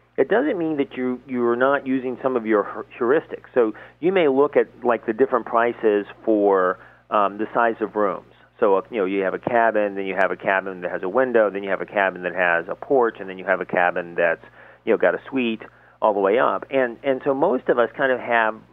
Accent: American